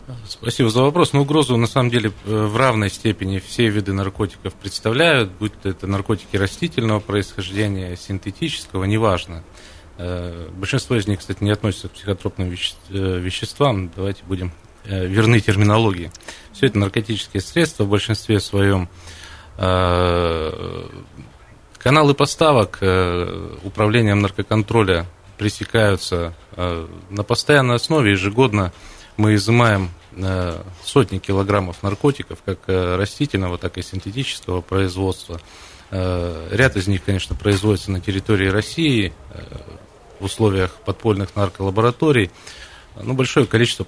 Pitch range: 90-110 Hz